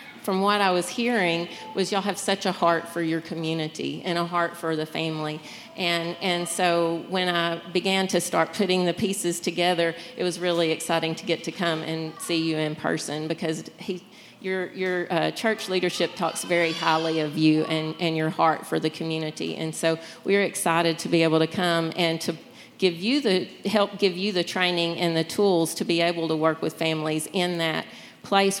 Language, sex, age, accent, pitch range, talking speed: English, female, 40-59, American, 165-190 Hz, 200 wpm